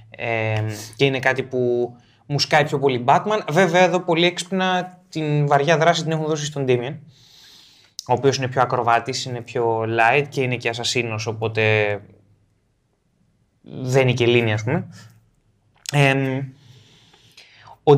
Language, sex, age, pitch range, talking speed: Greek, male, 20-39, 120-160 Hz, 145 wpm